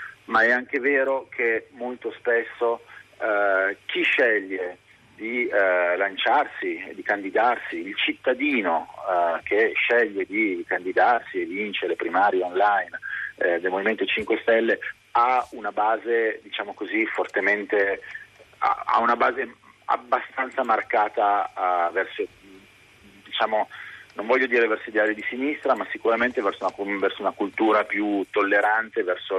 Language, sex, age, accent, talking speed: Italian, male, 40-59, native, 125 wpm